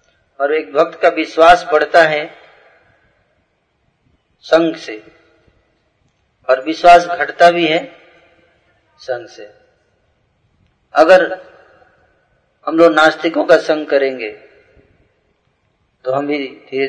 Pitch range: 135-175 Hz